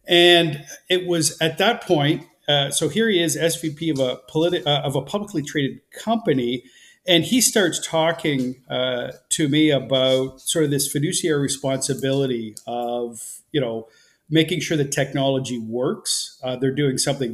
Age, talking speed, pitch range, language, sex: 50-69, 150 wpm, 130-160 Hz, English, male